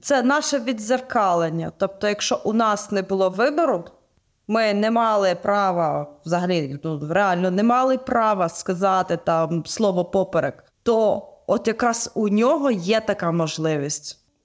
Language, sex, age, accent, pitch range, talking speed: Ukrainian, female, 20-39, native, 195-265 Hz, 130 wpm